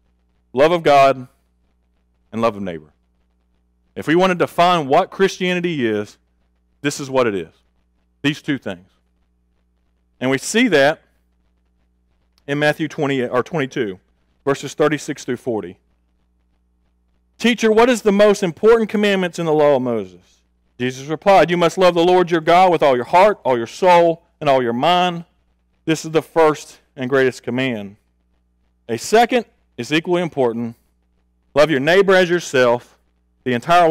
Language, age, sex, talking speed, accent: English, 40-59, male, 155 wpm, American